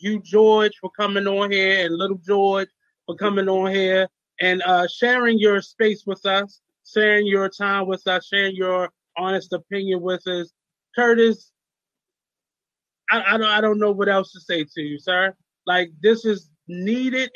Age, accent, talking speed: 20-39, American, 170 wpm